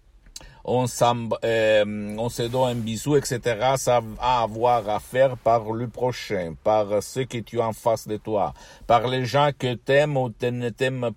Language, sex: Italian, male